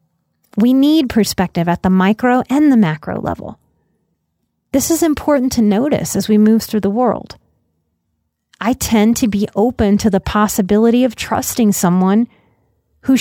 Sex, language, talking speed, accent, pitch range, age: female, English, 150 wpm, American, 185-255 Hz, 30-49